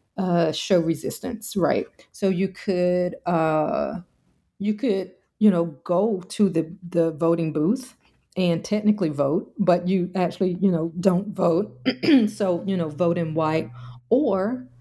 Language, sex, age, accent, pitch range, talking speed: English, female, 40-59, American, 155-200 Hz, 140 wpm